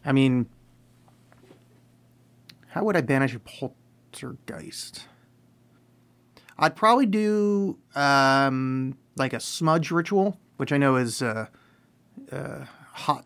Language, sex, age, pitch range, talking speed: English, male, 30-49, 120-140 Hz, 105 wpm